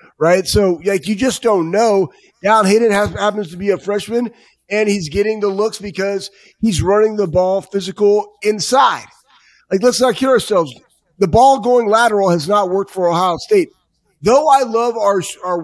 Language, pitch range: English, 195-230 Hz